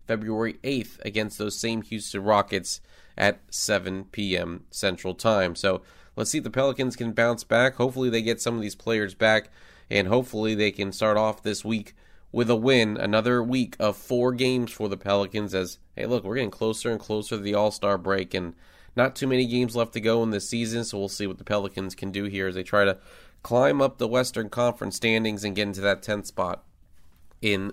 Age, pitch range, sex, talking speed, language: 30-49, 95-115 Hz, male, 210 wpm, English